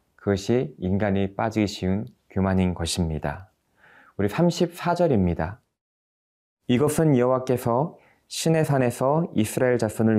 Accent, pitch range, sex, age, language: native, 95-120 Hz, male, 20-39, Korean